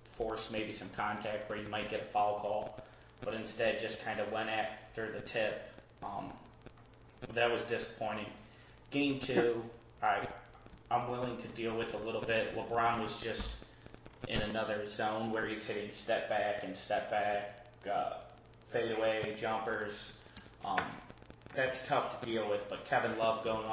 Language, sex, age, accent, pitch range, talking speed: English, male, 20-39, American, 110-120 Hz, 155 wpm